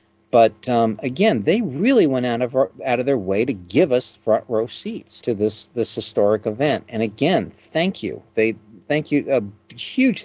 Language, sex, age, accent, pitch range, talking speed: English, male, 50-69, American, 110-135 Hz, 185 wpm